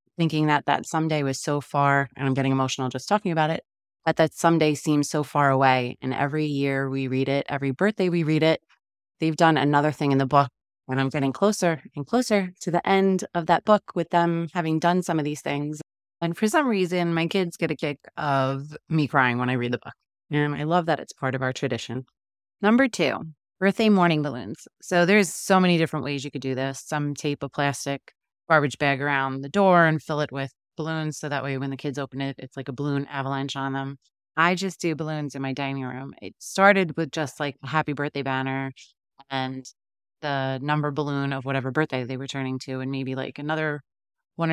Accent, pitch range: American, 135-165 Hz